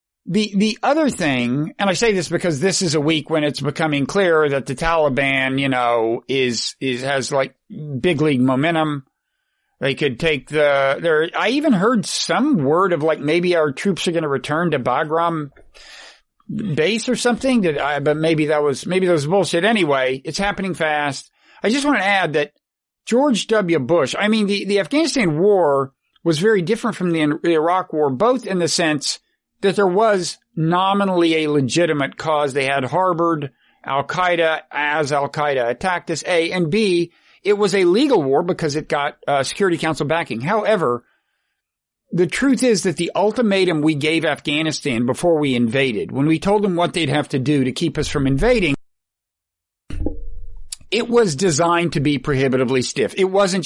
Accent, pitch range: American, 140-195 Hz